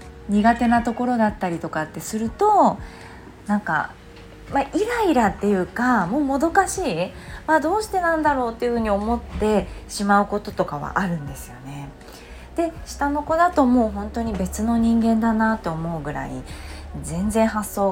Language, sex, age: Japanese, female, 20-39